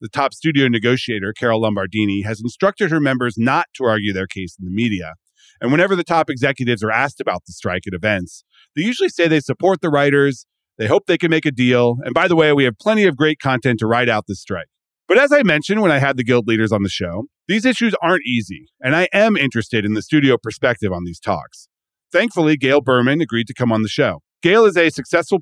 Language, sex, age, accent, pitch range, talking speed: English, male, 40-59, American, 110-155 Hz, 235 wpm